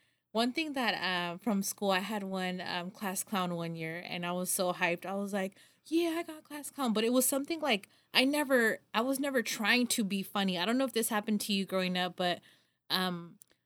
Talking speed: 235 wpm